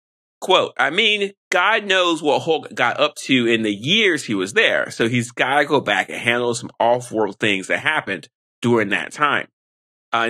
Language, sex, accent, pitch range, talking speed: English, male, American, 120-165 Hz, 190 wpm